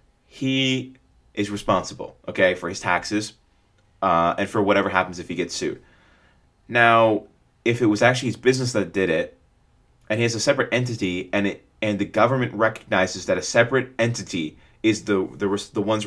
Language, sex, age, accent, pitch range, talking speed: English, male, 20-39, American, 95-115 Hz, 175 wpm